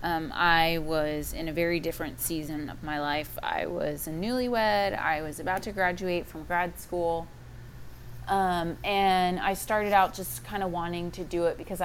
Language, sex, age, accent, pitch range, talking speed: English, female, 20-39, American, 150-175 Hz, 180 wpm